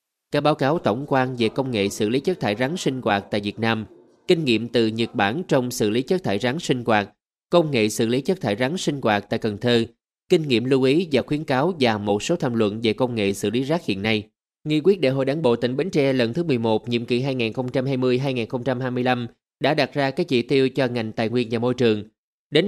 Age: 20-39